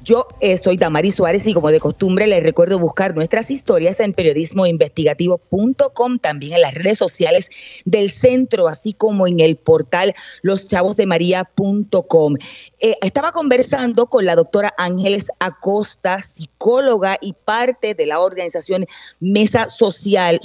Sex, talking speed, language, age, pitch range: female, 130 wpm, Spanish, 30-49, 170-225 Hz